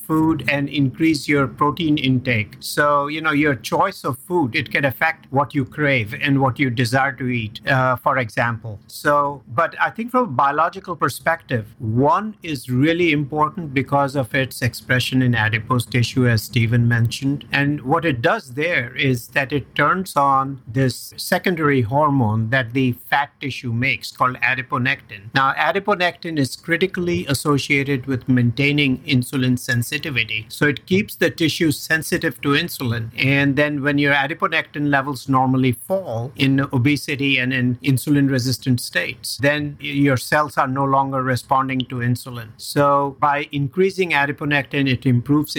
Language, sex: English, male